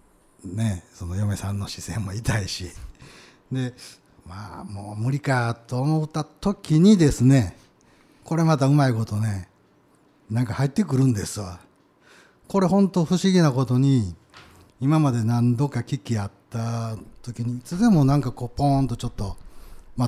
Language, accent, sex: Japanese, native, male